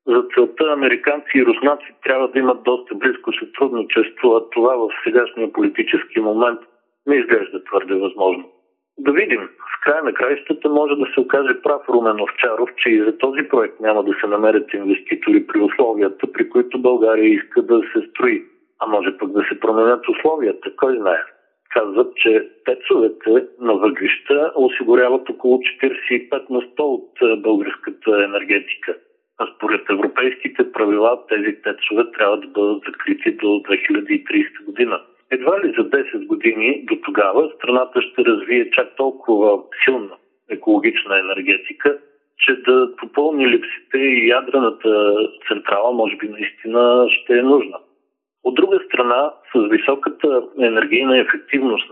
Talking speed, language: 140 wpm, Bulgarian